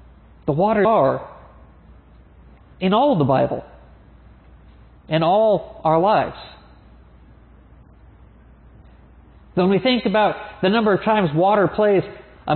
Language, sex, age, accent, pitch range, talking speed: English, male, 50-69, American, 170-220 Hz, 105 wpm